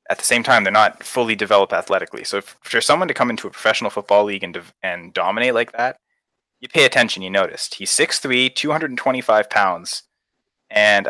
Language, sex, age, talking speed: English, male, 20-39, 195 wpm